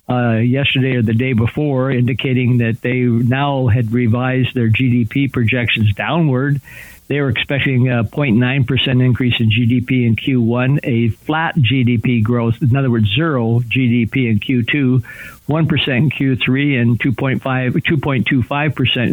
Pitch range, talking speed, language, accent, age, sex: 120-135 Hz, 135 wpm, English, American, 60-79, male